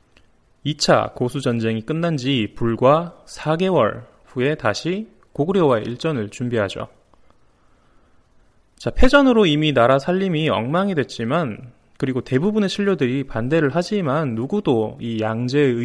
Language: Korean